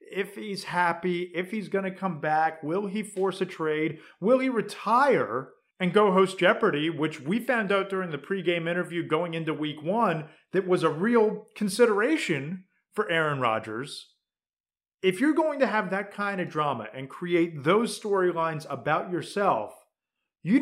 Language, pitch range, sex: English, 155-205 Hz, male